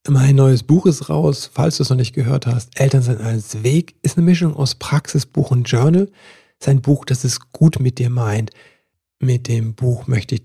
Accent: German